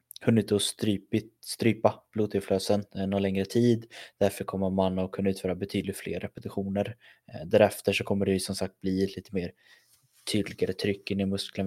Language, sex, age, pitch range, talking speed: Swedish, male, 20-39, 95-105 Hz, 165 wpm